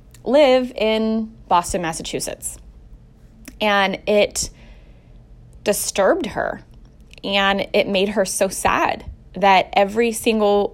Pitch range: 190-225 Hz